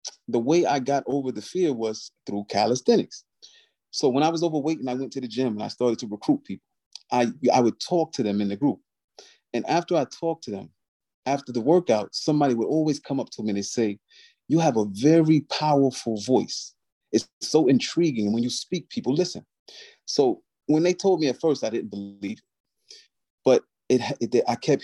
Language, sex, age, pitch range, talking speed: English, male, 30-49, 115-165 Hz, 210 wpm